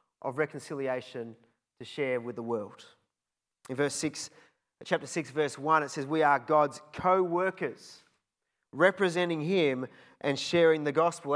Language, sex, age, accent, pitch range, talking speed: English, male, 30-49, Australian, 130-170 Hz, 135 wpm